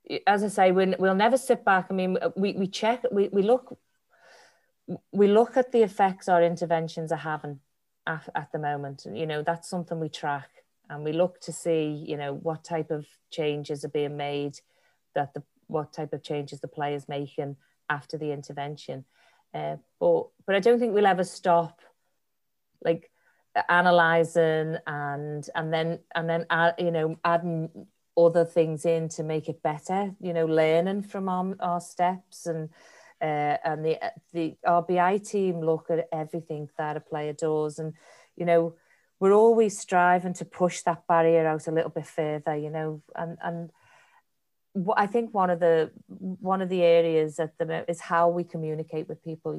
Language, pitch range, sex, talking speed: English, 155-180 Hz, female, 175 wpm